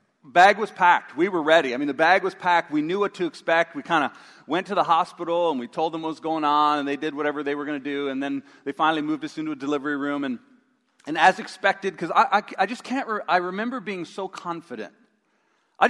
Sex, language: male, English